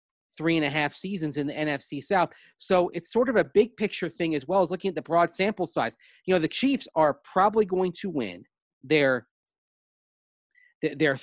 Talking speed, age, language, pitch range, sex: 200 wpm, 30-49, English, 140-185 Hz, male